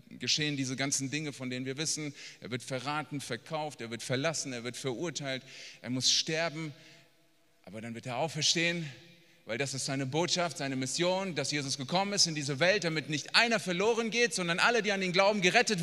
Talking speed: 195 wpm